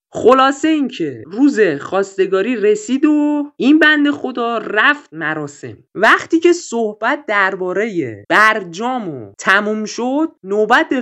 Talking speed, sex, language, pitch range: 110 wpm, male, Persian, 190-275 Hz